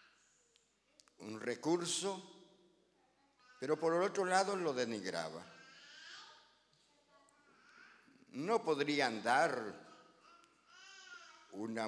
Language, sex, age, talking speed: English, male, 60-79, 65 wpm